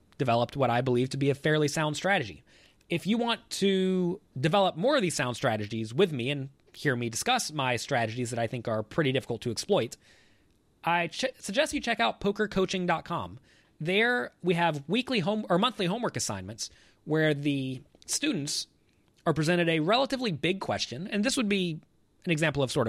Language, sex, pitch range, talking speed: English, male, 125-175 Hz, 180 wpm